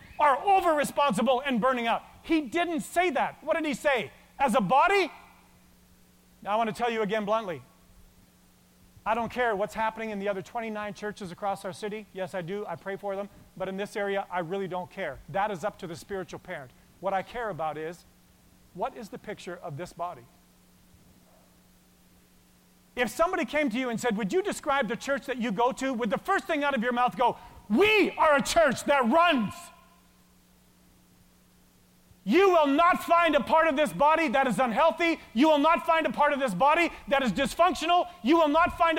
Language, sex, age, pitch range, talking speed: English, male, 40-59, 195-305 Hz, 200 wpm